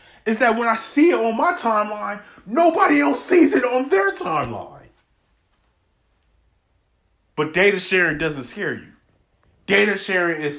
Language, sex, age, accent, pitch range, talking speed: English, male, 30-49, American, 110-180 Hz, 140 wpm